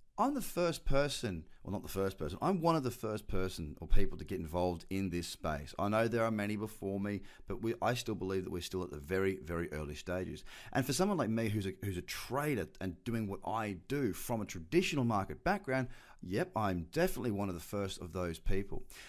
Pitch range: 90-120 Hz